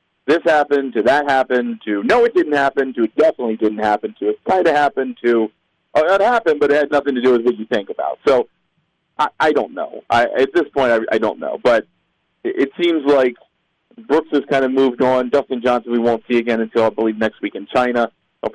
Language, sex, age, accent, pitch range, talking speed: English, male, 40-59, American, 105-125 Hz, 235 wpm